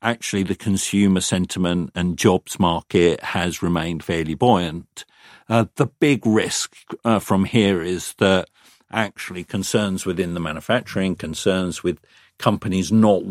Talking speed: 130 wpm